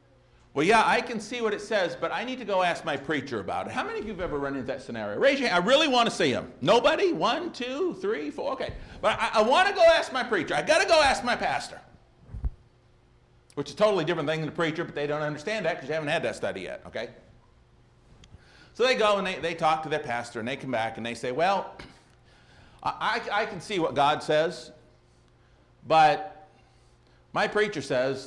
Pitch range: 130-210 Hz